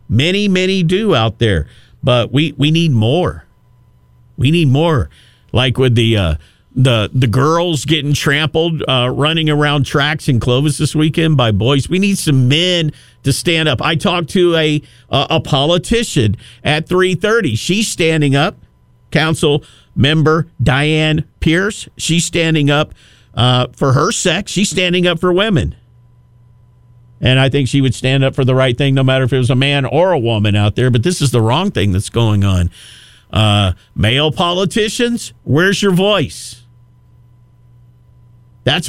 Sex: male